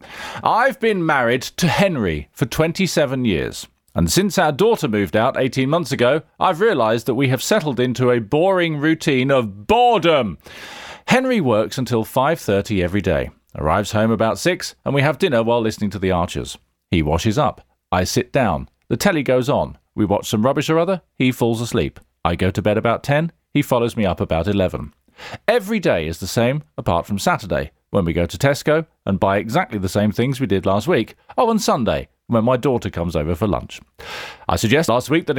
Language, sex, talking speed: English, male, 200 wpm